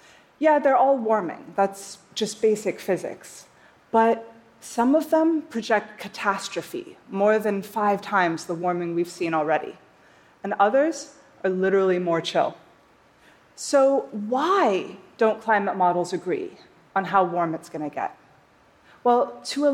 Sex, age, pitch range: female, 30-49, 195-265 Hz